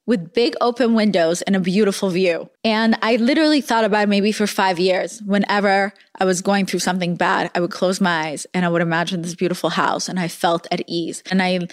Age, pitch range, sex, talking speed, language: 20-39, 185-230 Hz, female, 220 wpm, English